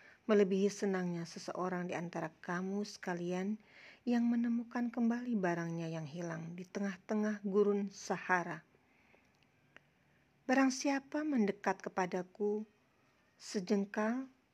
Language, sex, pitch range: Indonesian, female, 175-220 Hz